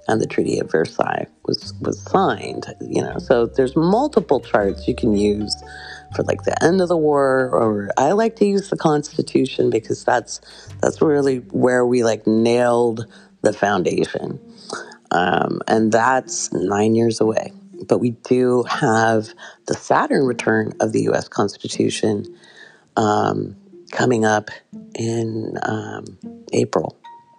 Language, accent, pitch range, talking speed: English, American, 110-155 Hz, 140 wpm